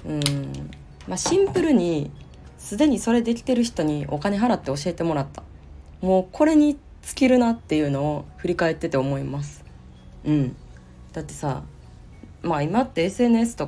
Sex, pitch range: female, 135-195 Hz